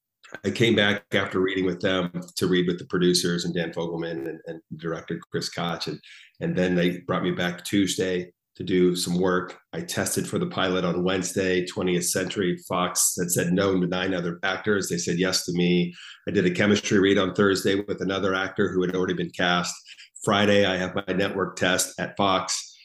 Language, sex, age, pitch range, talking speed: English, male, 40-59, 90-100 Hz, 200 wpm